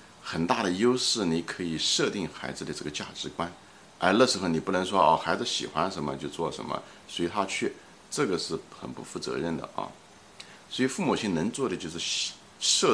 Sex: male